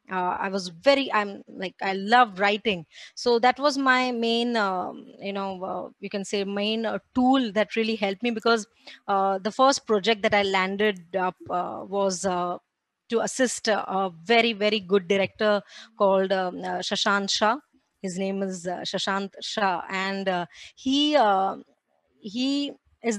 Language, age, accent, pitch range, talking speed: Hindi, 20-39, native, 195-235 Hz, 170 wpm